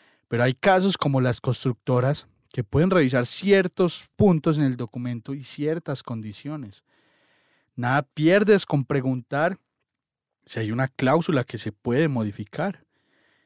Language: Spanish